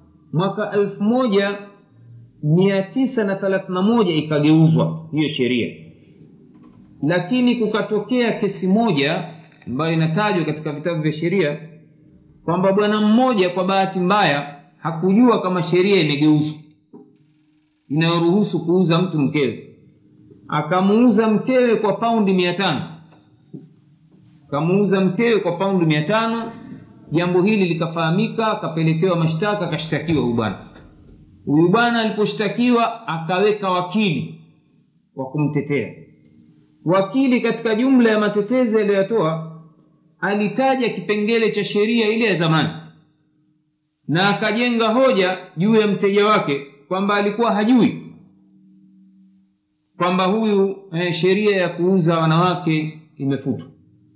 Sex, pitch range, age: male, 155-210 Hz, 40-59